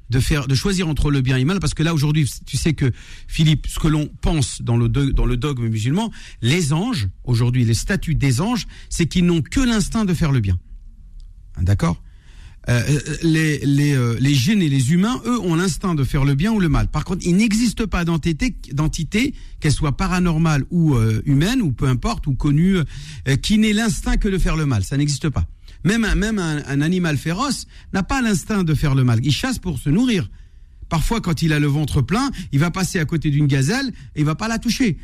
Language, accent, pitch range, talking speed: French, French, 130-180 Hz, 225 wpm